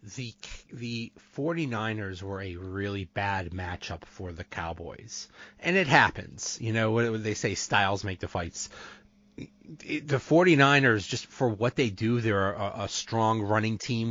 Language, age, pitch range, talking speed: English, 30-49, 110-150 Hz, 155 wpm